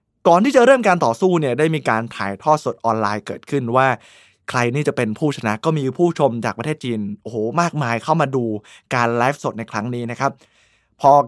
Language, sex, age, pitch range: Thai, male, 20-39, 130-195 Hz